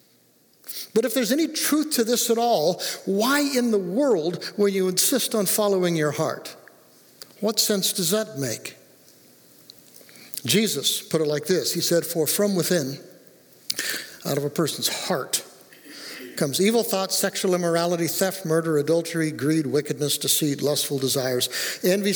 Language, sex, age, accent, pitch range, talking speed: English, male, 60-79, American, 155-210 Hz, 145 wpm